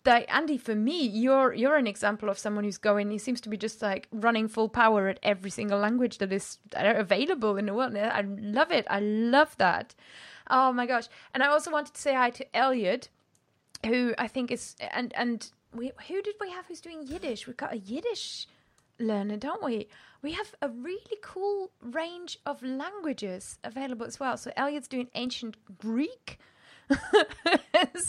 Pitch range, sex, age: 210-270 Hz, female, 20-39